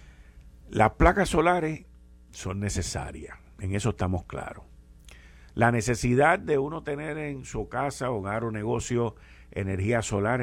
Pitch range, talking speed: 75-125 Hz, 125 wpm